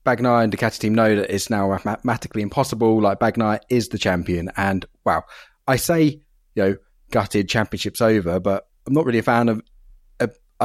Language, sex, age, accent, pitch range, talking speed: English, male, 30-49, British, 95-120 Hz, 185 wpm